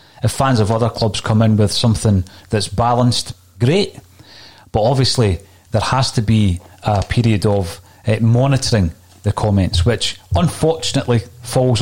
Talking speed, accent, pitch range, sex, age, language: 140 wpm, British, 100-120 Hz, male, 40-59, English